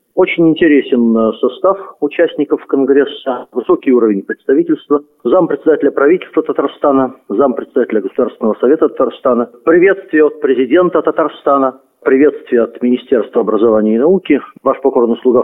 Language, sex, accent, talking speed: Russian, male, native, 110 wpm